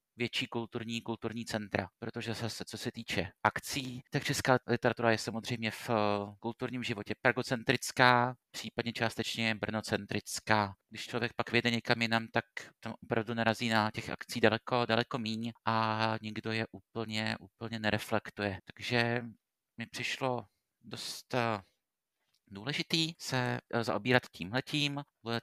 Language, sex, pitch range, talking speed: Czech, male, 110-125 Hz, 125 wpm